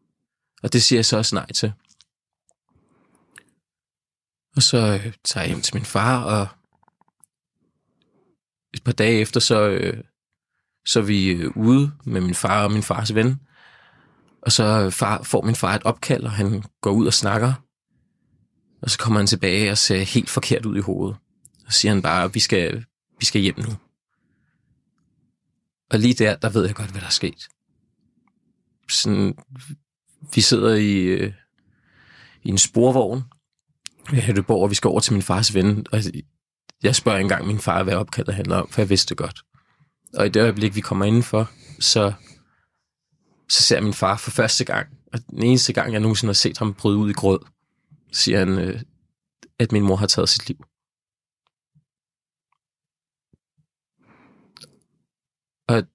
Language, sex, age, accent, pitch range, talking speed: Danish, male, 20-39, native, 100-120 Hz, 165 wpm